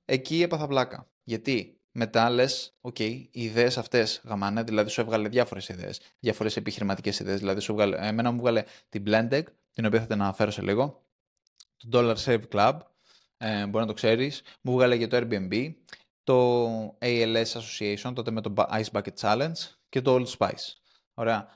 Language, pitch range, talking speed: Greek, 110-150 Hz, 175 wpm